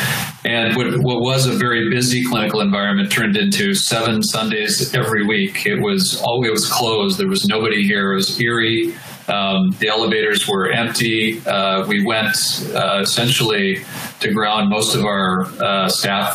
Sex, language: male, English